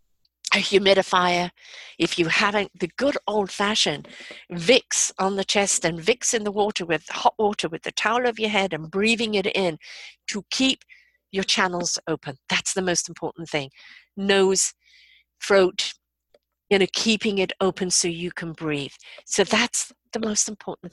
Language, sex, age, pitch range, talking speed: English, female, 50-69, 170-220 Hz, 160 wpm